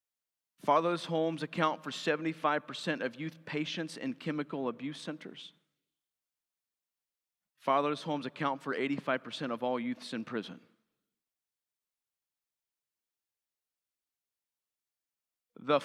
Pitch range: 140-175 Hz